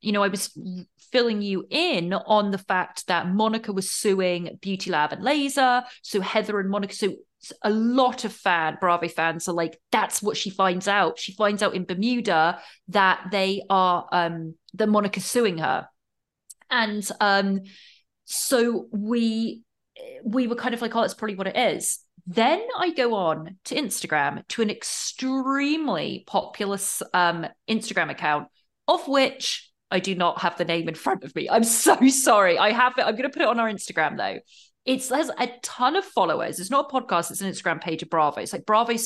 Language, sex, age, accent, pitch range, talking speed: English, female, 30-49, British, 190-255 Hz, 190 wpm